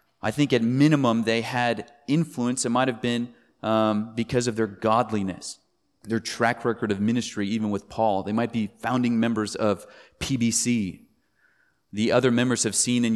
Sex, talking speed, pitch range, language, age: male, 170 wpm, 110-130 Hz, English, 30-49